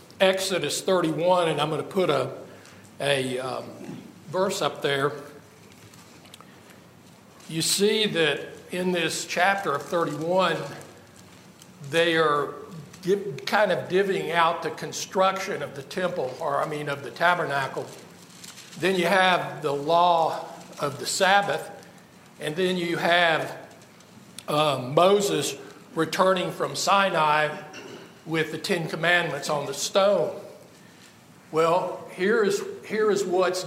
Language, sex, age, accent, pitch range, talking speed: English, male, 60-79, American, 155-190 Hz, 120 wpm